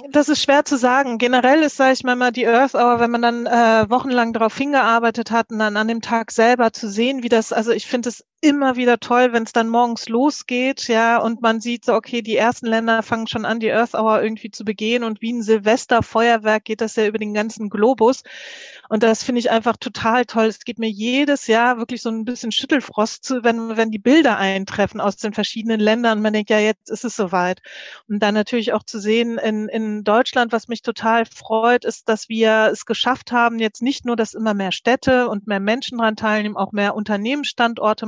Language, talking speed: German, 220 wpm